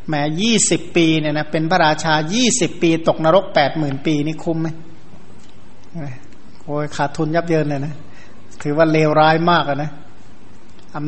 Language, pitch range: Thai, 155-180 Hz